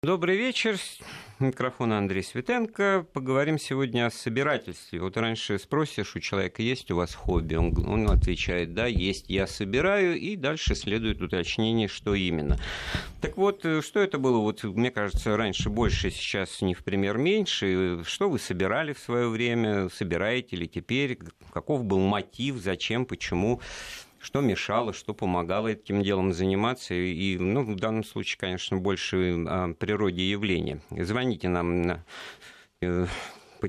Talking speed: 140 wpm